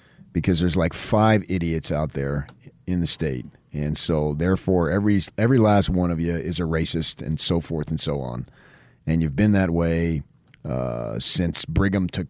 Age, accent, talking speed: 40-59, American, 180 wpm